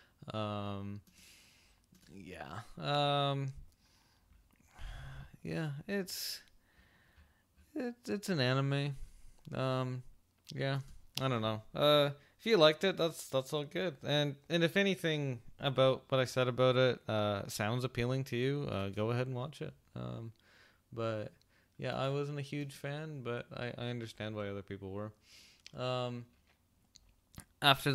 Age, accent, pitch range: 20-39, American, 100-145 Hz